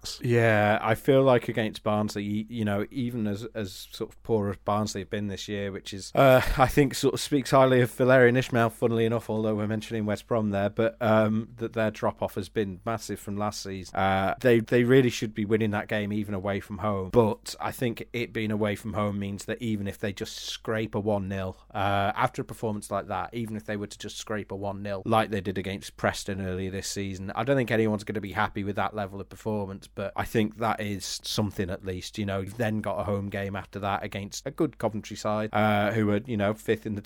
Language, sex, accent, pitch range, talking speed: English, male, British, 100-115 Hz, 245 wpm